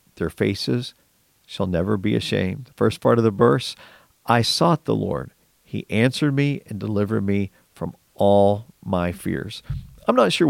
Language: English